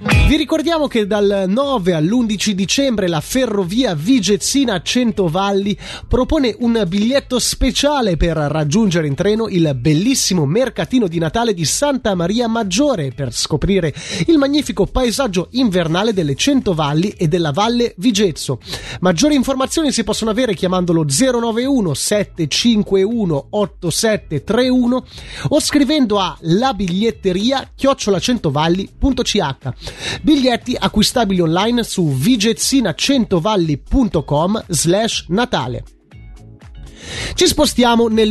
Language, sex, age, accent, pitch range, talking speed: Italian, male, 30-49, native, 165-245 Hz, 95 wpm